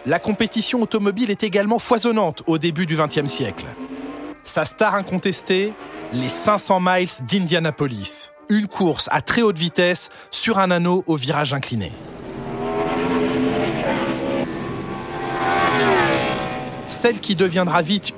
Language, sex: French, male